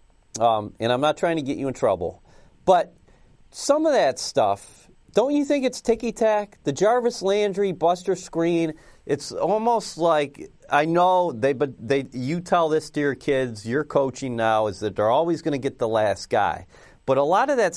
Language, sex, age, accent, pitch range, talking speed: English, male, 40-59, American, 130-180 Hz, 195 wpm